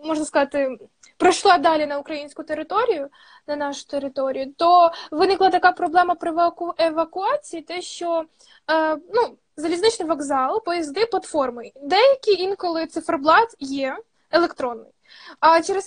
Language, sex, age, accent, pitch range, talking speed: Ukrainian, female, 20-39, native, 300-365 Hz, 115 wpm